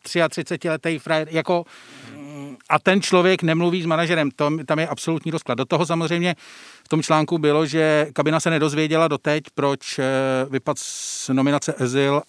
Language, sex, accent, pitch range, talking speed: Czech, male, native, 130-155 Hz, 145 wpm